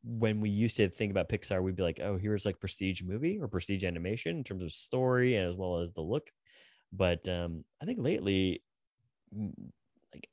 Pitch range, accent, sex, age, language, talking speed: 95-120 Hz, American, male, 20-39, English, 190 wpm